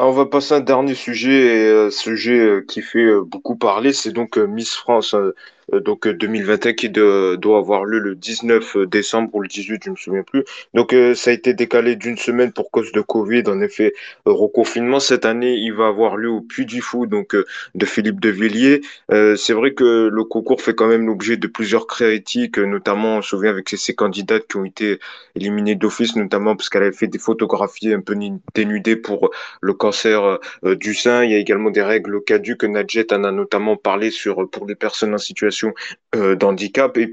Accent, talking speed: French, 205 wpm